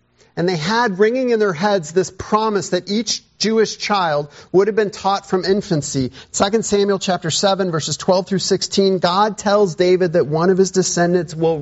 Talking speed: 185 wpm